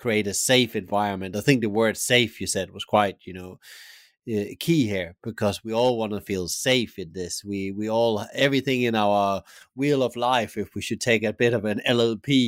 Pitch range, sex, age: 100-120 Hz, male, 30-49